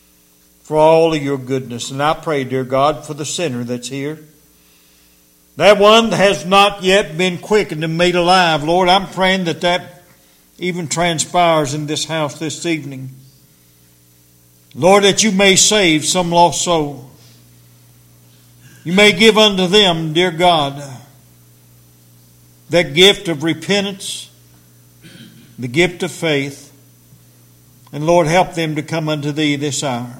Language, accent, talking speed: English, American, 140 wpm